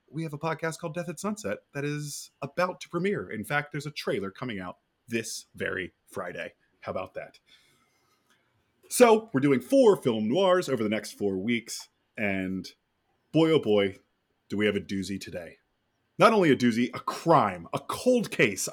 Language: English